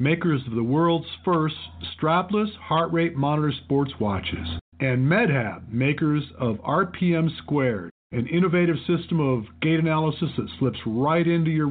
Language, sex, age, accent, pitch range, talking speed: English, male, 50-69, American, 125-175 Hz, 145 wpm